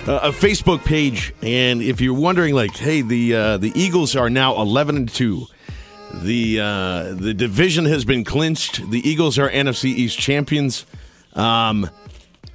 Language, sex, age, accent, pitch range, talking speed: English, male, 40-59, American, 120-150 Hz, 160 wpm